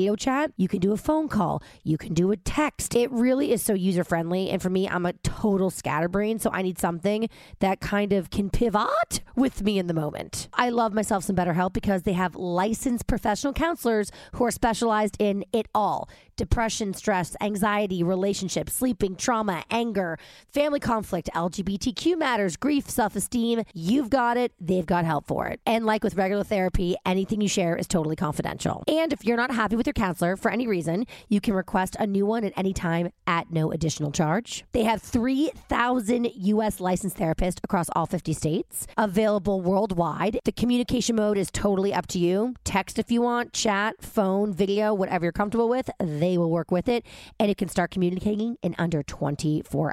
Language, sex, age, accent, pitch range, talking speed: English, female, 30-49, American, 185-230 Hz, 190 wpm